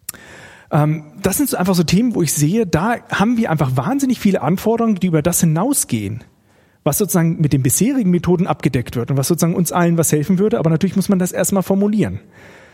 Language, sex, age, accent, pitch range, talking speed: German, male, 40-59, German, 150-195 Hz, 200 wpm